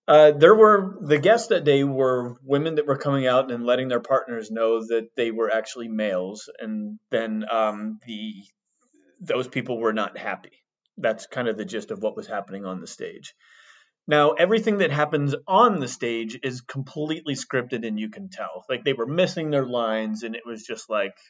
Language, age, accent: English, 30-49, American